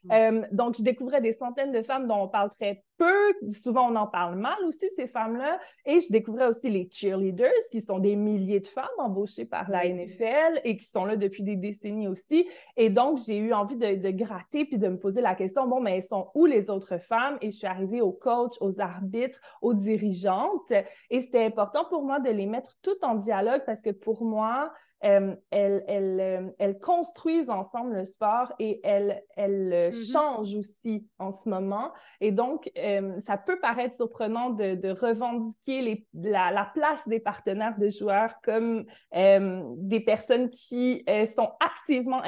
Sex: female